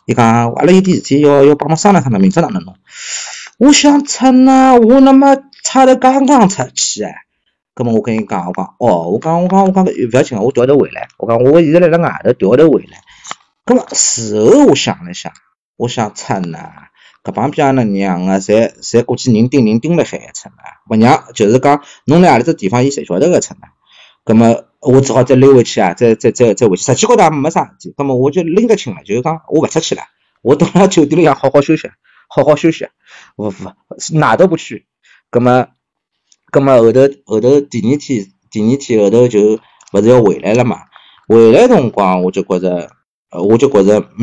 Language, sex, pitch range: Chinese, male, 110-175 Hz